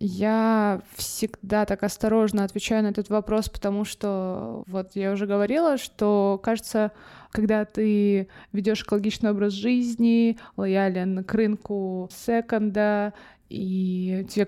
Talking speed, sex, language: 115 wpm, female, Russian